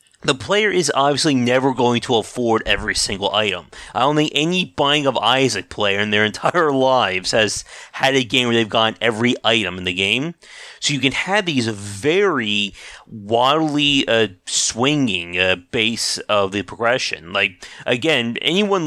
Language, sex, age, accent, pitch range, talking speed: English, male, 30-49, American, 110-145 Hz, 165 wpm